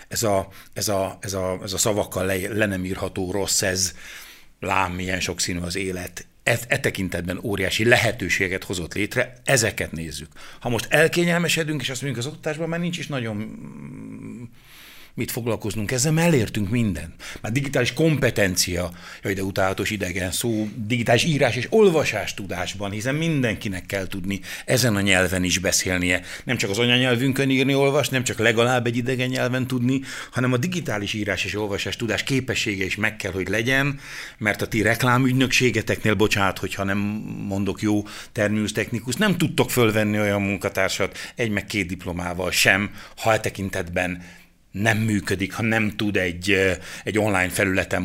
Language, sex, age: Hungarian, male, 60-79